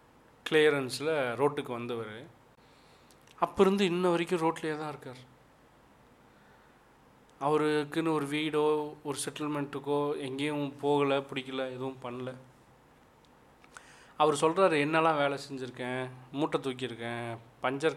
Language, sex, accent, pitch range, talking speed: Tamil, male, native, 120-145 Hz, 95 wpm